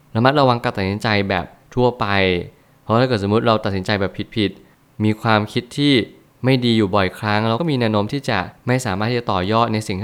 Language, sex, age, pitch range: Thai, male, 20-39, 100-125 Hz